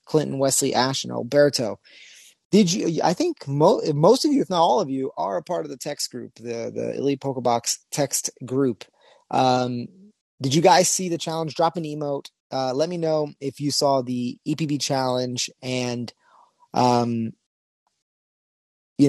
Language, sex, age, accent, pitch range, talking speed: English, male, 30-49, American, 125-160 Hz, 175 wpm